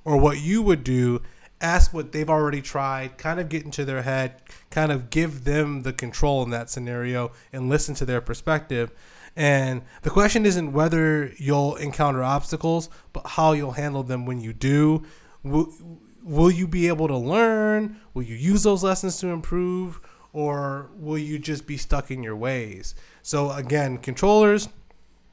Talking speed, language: 170 wpm, English